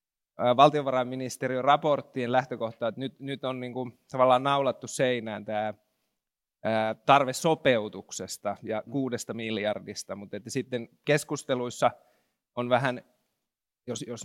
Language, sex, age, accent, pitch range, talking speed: Finnish, male, 30-49, native, 115-135 Hz, 110 wpm